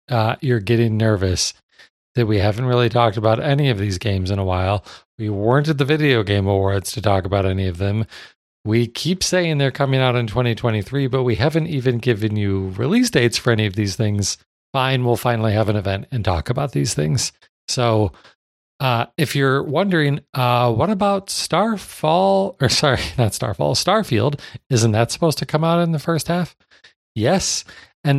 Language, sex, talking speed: English, male, 185 wpm